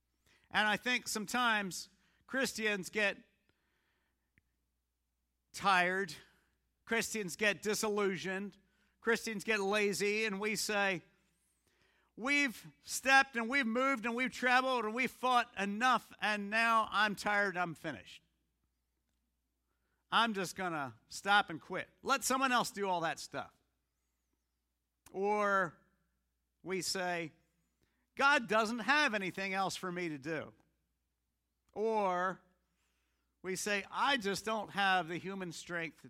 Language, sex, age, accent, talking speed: English, male, 50-69, American, 115 wpm